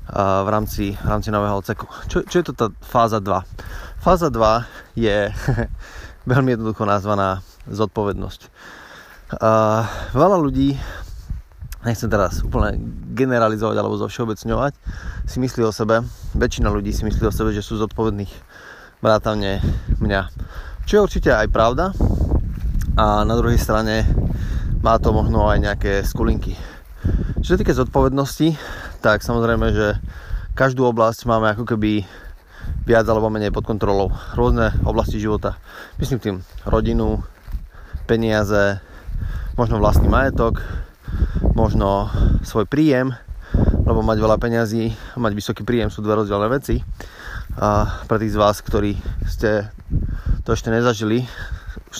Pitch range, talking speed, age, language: 95-115 Hz, 130 wpm, 20-39, Slovak